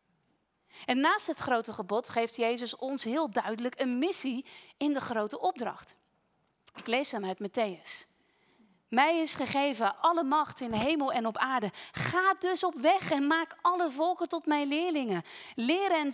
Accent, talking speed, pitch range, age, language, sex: Dutch, 160 wpm, 260-340 Hz, 30-49, Dutch, female